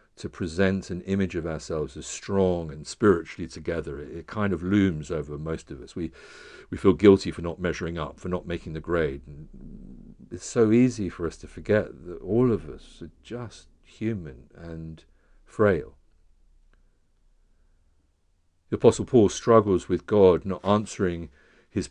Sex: male